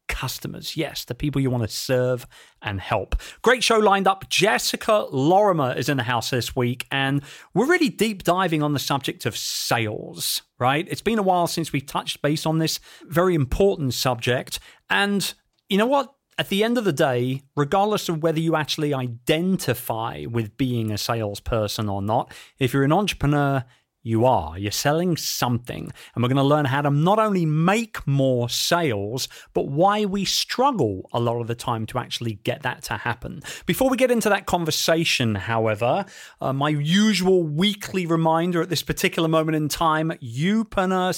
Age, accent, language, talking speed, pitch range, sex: 40-59, British, English, 180 wpm, 130-190 Hz, male